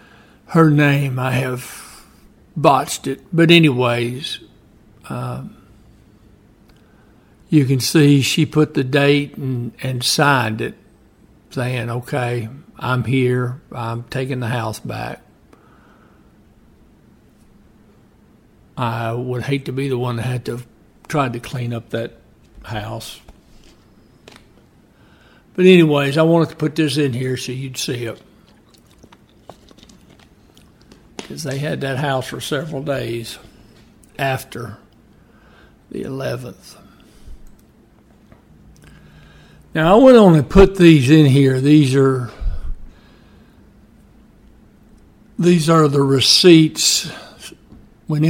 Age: 60-79